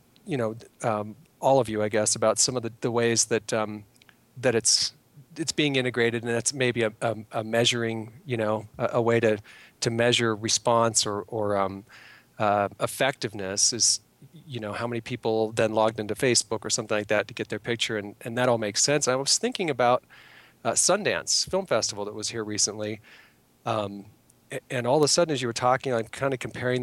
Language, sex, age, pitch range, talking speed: English, male, 40-59, 110-125 Hz, 205 wpm